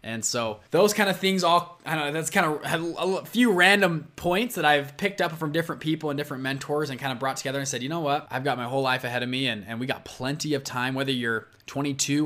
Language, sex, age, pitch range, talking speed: English, male, 20-39, 125-175 Hz, 270 wpm